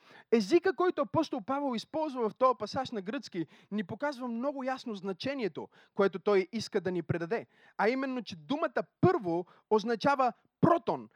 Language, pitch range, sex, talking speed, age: Bulgarian, 205-255 Hz, male, 150 wpm, 20-39